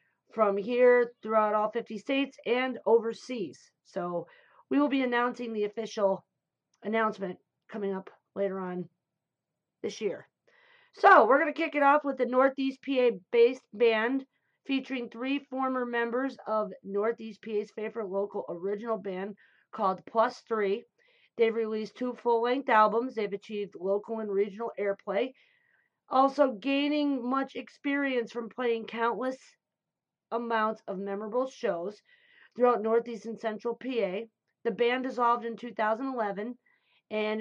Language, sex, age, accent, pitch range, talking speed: English, female, 40-59, American, 215-260 Hz, 130 wpm